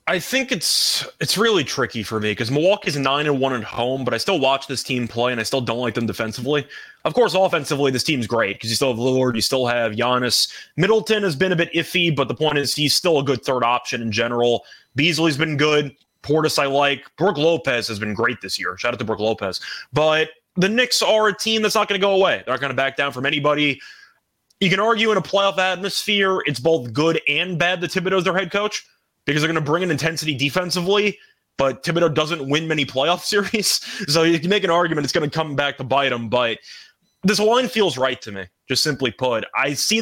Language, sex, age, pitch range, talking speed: English, male, 20-39, 130-180 Hz, 240 wpm